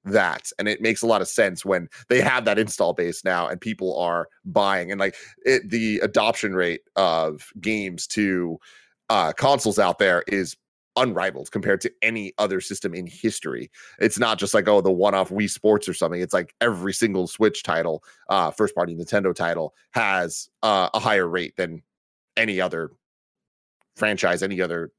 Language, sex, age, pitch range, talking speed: English, male, 30-49, 95-120 Hz, 175 wpm